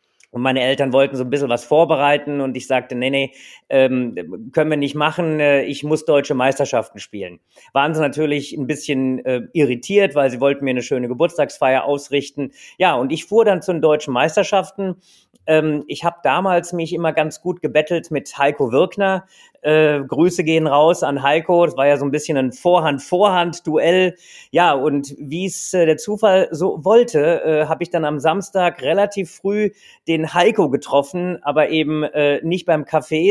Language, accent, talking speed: German, German, 180 wpm